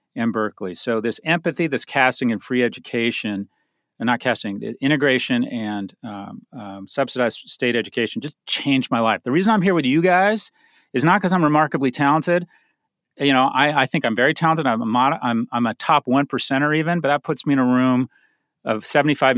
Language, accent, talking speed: English, American, 200 wpm